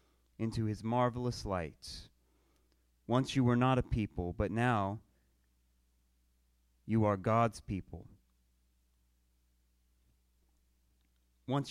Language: English